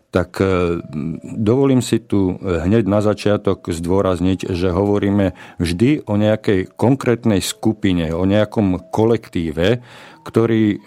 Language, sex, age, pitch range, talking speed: Slovak, male, 50-69, 90-110 Hz, 105 wpm